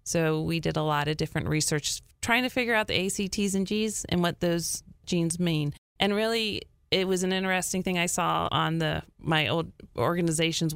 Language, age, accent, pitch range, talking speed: English, 30-49, American, 150-175 Hz, 195 wpm